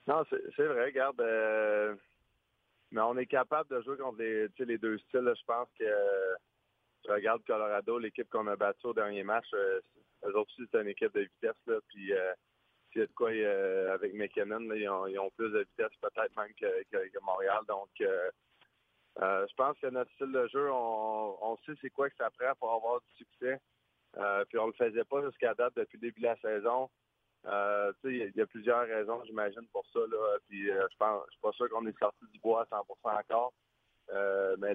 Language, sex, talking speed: French, male, 215 wpm